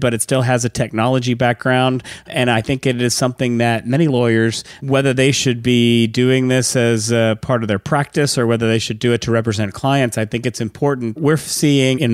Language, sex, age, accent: English, male, 40-59, American